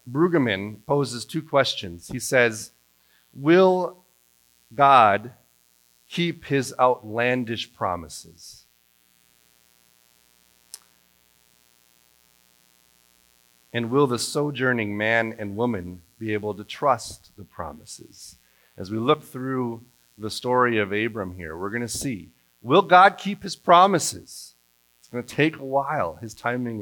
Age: 40-59